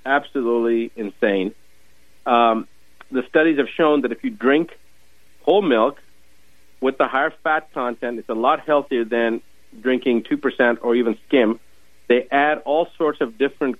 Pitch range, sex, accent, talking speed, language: 110-130 Hz, male, American, 150 wpm, English